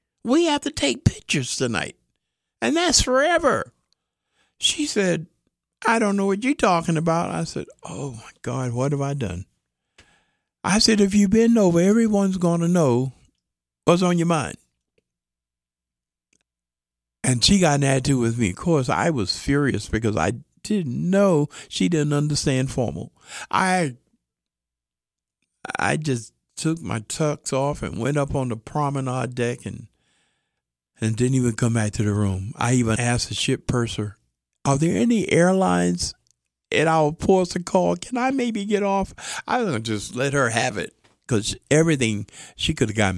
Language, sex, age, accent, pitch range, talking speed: English, male, 50-69, American, 105-160 Hz, 165 wpm